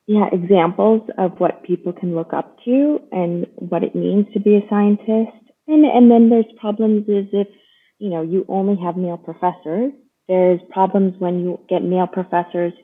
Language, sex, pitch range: English, female, 175-220 Hz